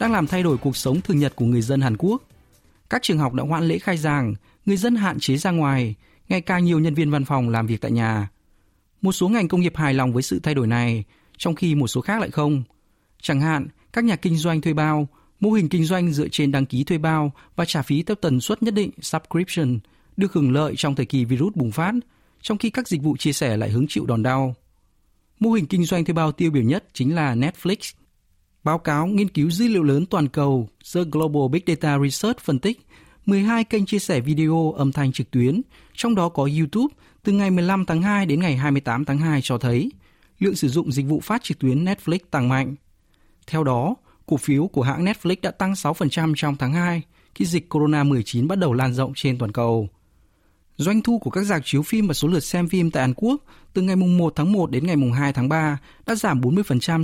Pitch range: 130-180 Hz